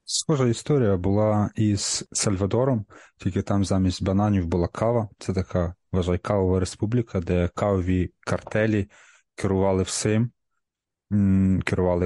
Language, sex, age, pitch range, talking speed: Ukrainian, male, 30-49, 95-115 Hz, 110 wpm